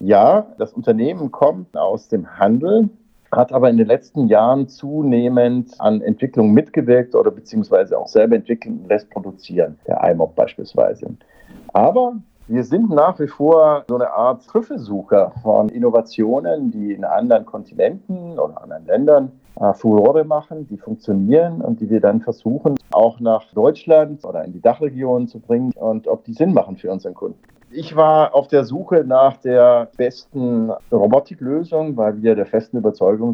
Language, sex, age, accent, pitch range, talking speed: German, male, 50-69, German, 110-155 Hz, 155 wpm